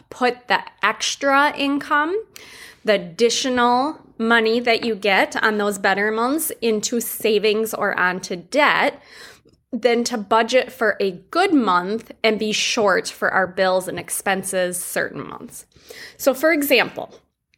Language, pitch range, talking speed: English, 195-245 Hz, 135 wpm